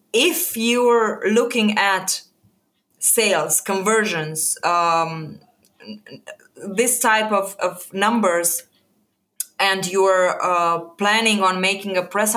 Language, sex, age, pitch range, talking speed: English, female, 20-39, 185-220 Hz, 95 wpm